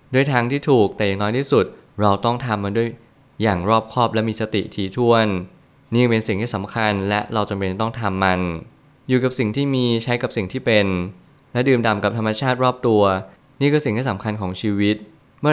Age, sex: 20-39, male